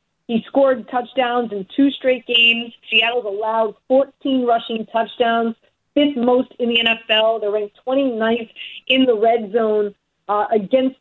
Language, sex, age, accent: English, female, 40-59, American